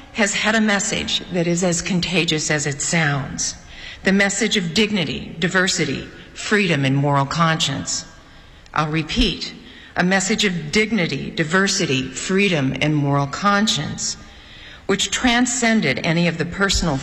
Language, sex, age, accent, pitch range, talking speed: English, female, 50-69, American, 155-215 Hz, 130 wpm